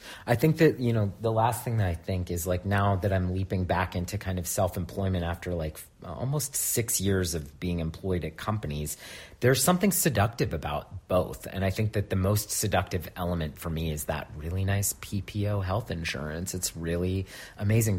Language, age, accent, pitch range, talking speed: English, 30-49, American, 90-115 Hz, 190 wpm